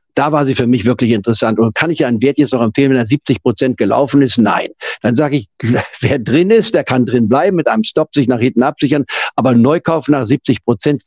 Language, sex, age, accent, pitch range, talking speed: German, male, 50-69, German, 120-155 Hz, 230 wpm